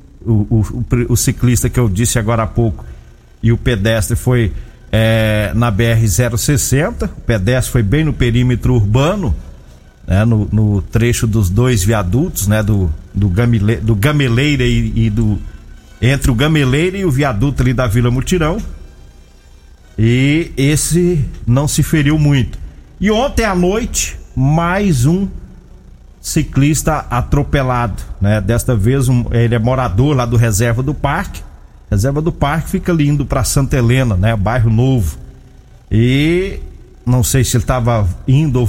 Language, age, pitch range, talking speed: Portuguese, 50-69, 110-145 Hz, 150 wpm